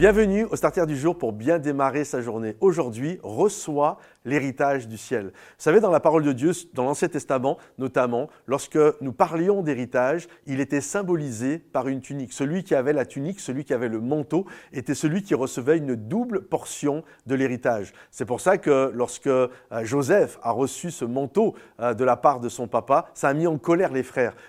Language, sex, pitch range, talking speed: French, male, 130-165 Hz, 190 wpm